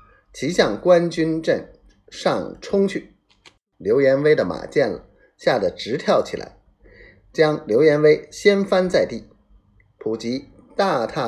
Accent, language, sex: native, Chinese, male